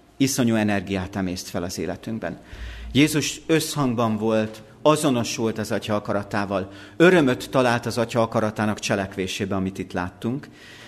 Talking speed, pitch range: 120 wpm, 100-135 Hz